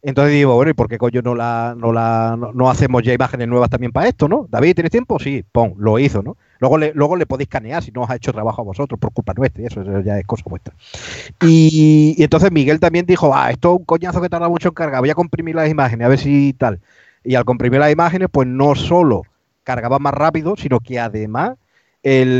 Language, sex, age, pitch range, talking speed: Spanish, male, 30-49, 115-145 Hz, 250 wpm